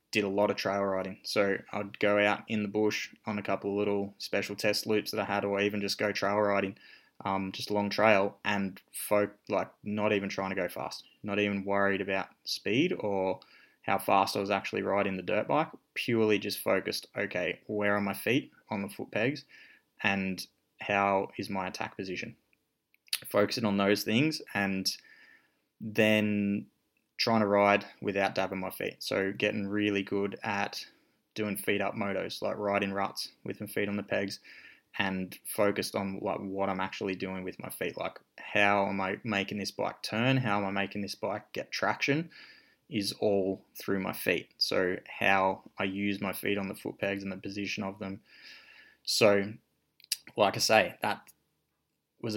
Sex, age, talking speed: male, 20-39, 185 wpm